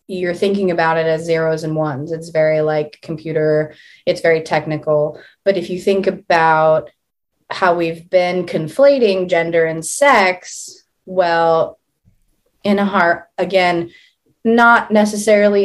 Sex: female